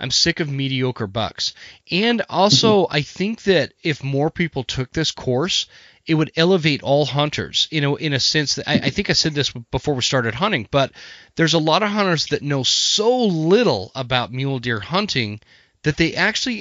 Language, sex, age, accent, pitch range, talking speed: English, male, 30-49, American, 125-165 Hz, 190 wpm